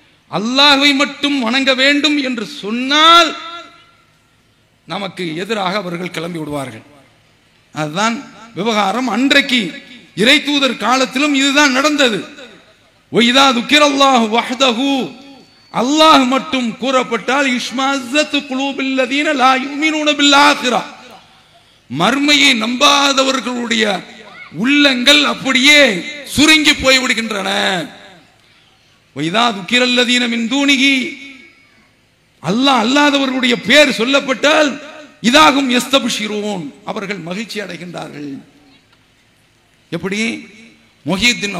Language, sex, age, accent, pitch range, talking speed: English, male, 50-69, Indian, 190-275 Hz, 80 wpm